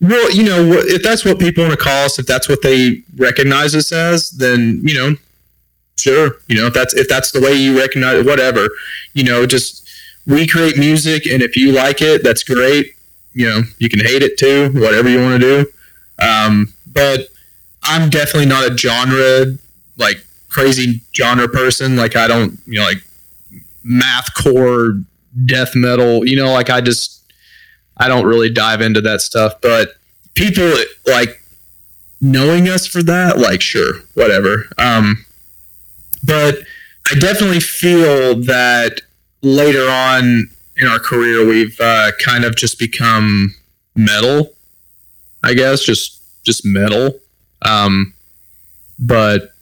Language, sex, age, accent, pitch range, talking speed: English, male, 30-49, American, 115-145 Hz, 150 wpm